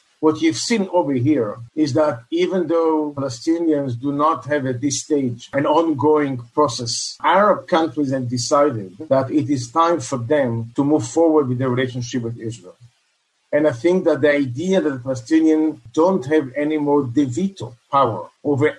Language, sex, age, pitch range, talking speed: English, male, 50-69, 125-160 Hz, 170 wpm